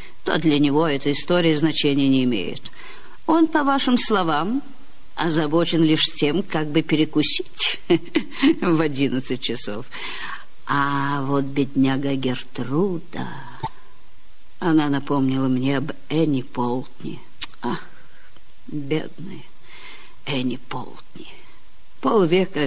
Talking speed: 100 wpm